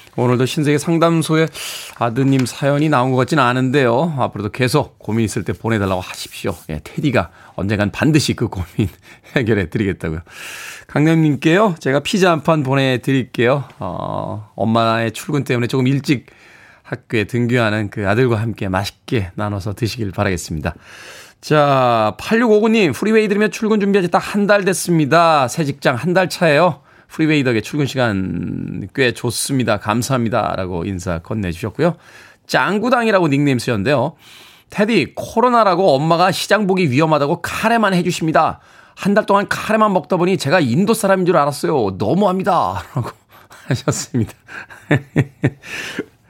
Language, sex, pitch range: Korean, male, 115-175 Hz